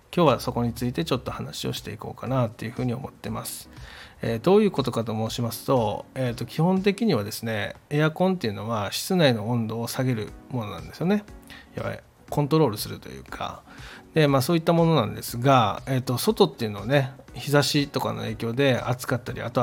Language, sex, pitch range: Japanese, male, 110-135 Hz